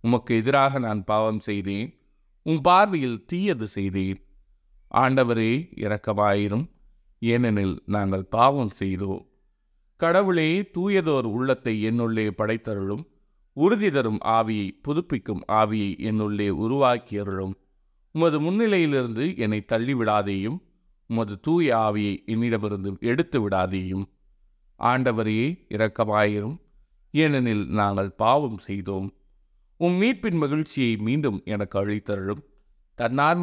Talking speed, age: 90 wpm, 30-49